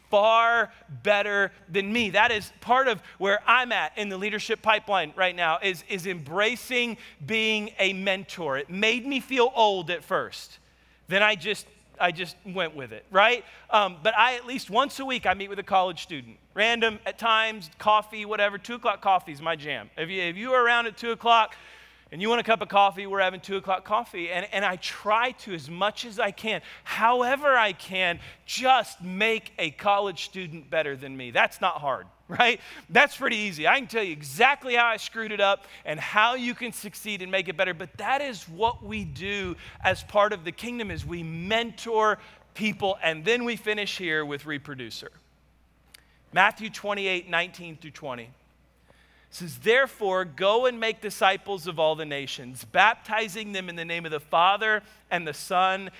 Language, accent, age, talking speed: English, American, 30-49, 195 wpm